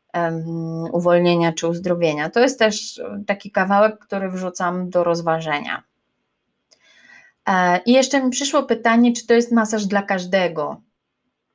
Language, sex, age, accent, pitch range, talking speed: Polish, female, 20-39, native, 180-225 Hz, 120 wpm